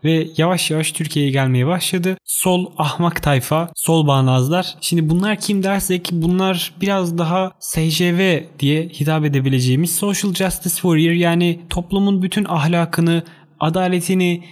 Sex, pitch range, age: male, 160-195 Hz, 30-49